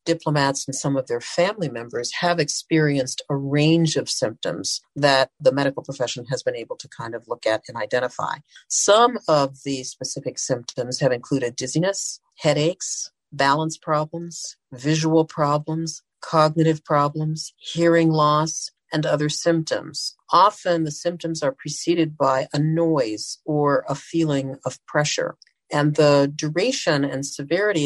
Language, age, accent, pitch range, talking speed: English, 50-69, American, 140-165 Hz, 140 wpm